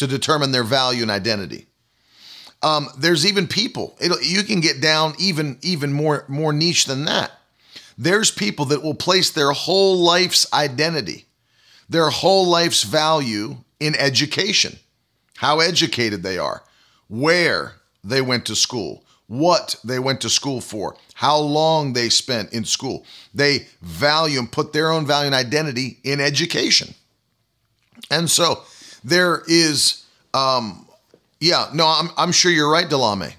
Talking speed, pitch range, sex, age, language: 145 wpm, 135-165 Hz, male, 40-59, English